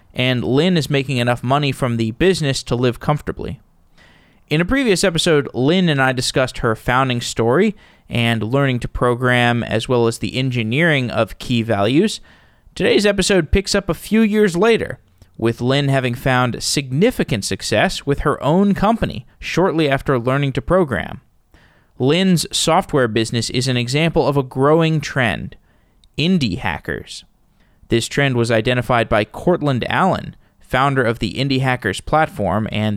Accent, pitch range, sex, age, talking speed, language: American, 115-160 Hz, male, 20-39, 155 wpm, English